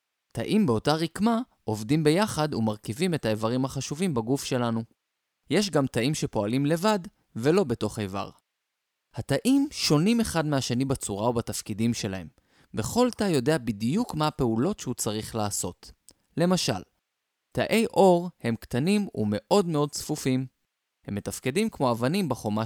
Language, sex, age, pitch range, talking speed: Hebrew, male, 20-39, 110-170 Hz, 125 wpm